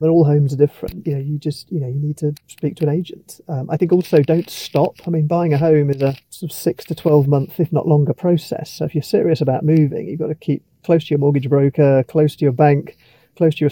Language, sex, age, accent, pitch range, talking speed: English, male, 40-59, British, 145-165 Hz, 275 wpm